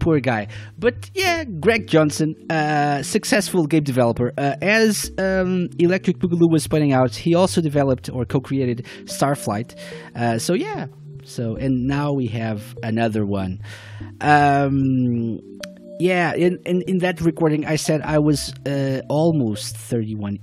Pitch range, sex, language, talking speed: 125-185 Hz, male, English, 145 wpm